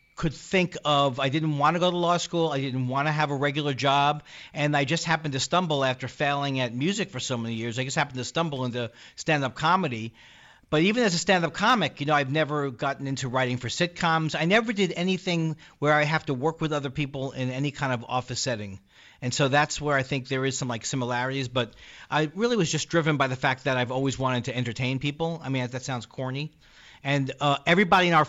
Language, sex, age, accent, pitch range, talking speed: English, male, 40-59, American, 130-160 Hz, 240 wpm